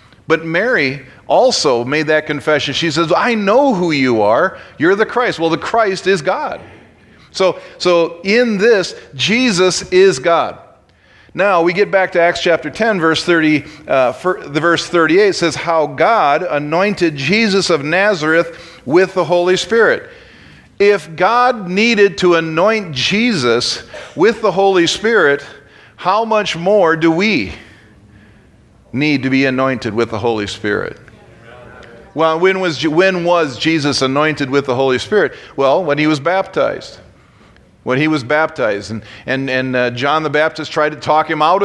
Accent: American